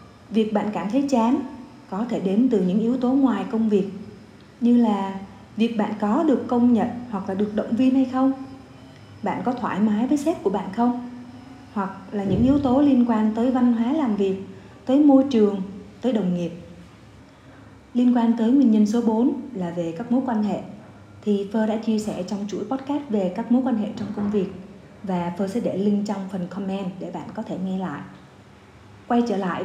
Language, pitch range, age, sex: Vietnamese, 195-245 Hz, 20-39, female